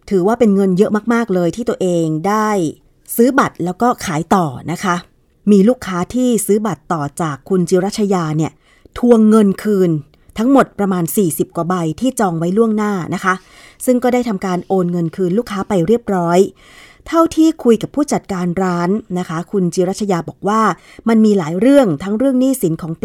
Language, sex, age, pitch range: Thai, female, 30-49, 175-225 Hz